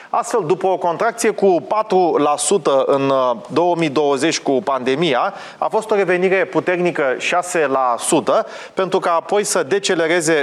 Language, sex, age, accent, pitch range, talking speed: Romanian, male, 30-49, native, 135-180 Hz, 120 wpm